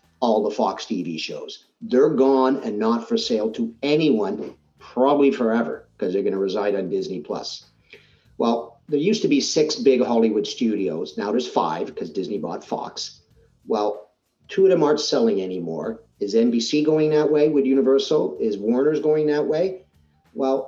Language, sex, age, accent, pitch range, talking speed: English, male, 50-69, American, 105-155 Hz, 170 wpm